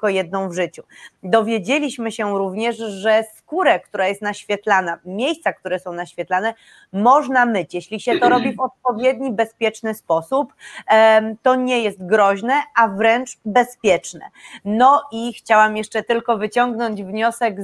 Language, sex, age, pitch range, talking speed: Polish, female, 30-49, 210-250 Hz, 135 wpm